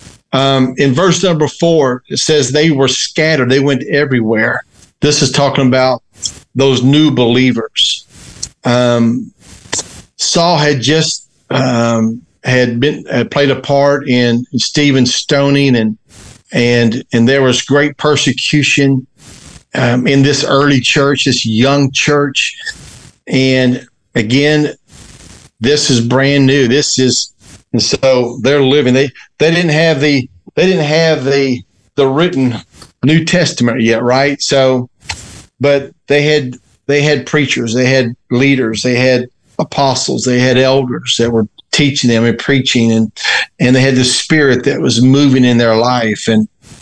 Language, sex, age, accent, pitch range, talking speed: English, male, 50-69, American, 125-145 Hz, 140 wpm